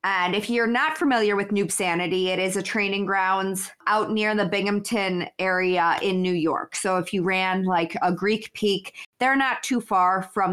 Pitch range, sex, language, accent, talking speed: 185-220 Hz, female, English, American, 195 wpm